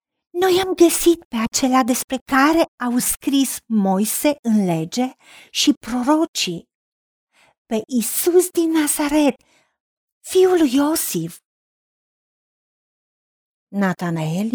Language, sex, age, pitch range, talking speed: Romanian, female, 40-59, 180-285 Hz, 90 wpm